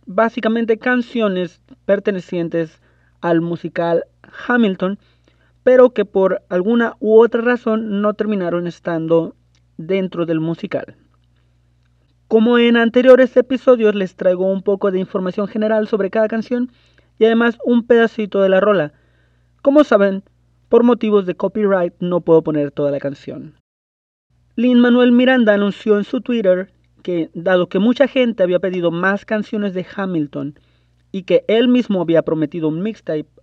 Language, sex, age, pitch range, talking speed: Spanish, male, 30-49, 160-225 Hz, 140 wpm